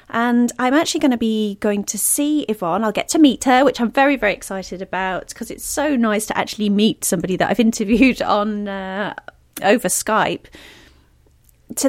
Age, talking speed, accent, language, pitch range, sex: 30-49, 185 wpm, British, English, 180-235 Hz, female